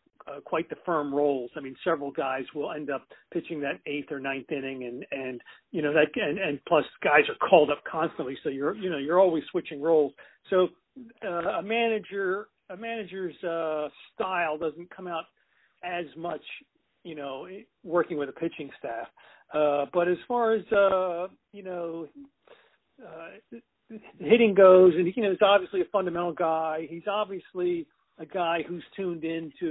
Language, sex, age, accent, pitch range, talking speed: English, male, 50-69, American, 150-185 Hz, 170 wpm